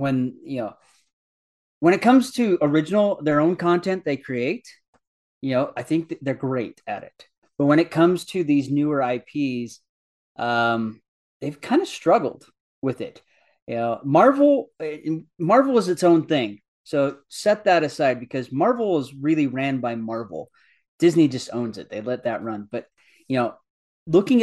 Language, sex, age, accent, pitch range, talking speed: English, male, 30-49, American, 120-170 Hz, 170 wpm